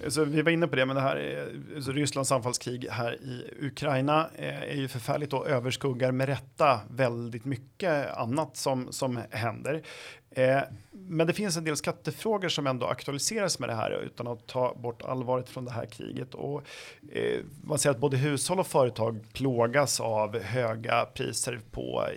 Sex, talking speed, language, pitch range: male, 175 wpm, Swedish, 120-150 Hz